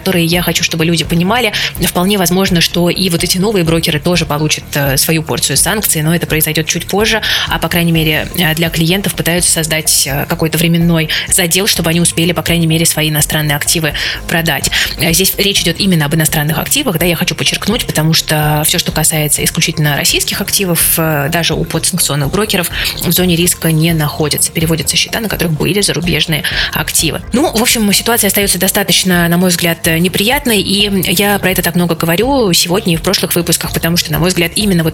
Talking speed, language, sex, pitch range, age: 185 wpm, Russian, female, 155-180 Hz, 20-39